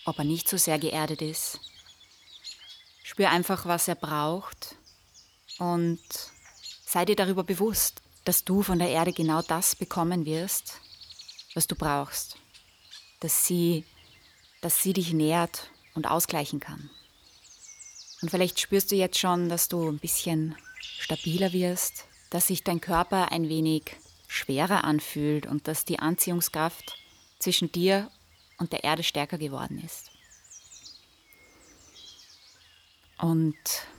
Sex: female